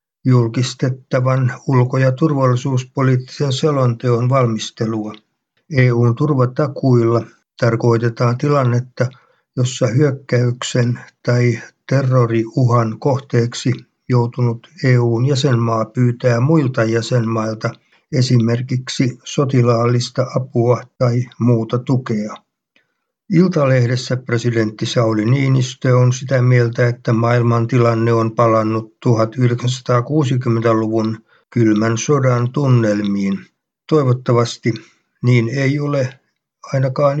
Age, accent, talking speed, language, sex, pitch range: 50-69, native, 75 wpm, Finnish, male, 115-135 Hz